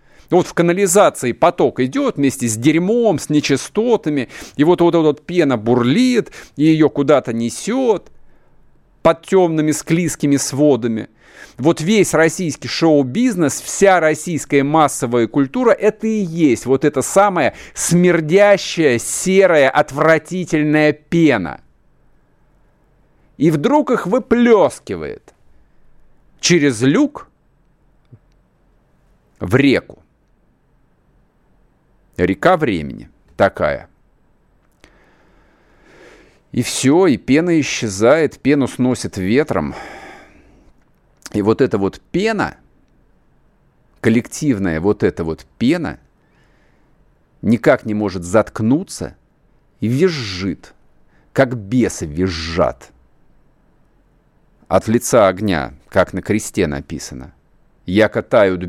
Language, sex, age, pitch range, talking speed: Russian, male, 50-69, 110-170 Hz, 90 wpm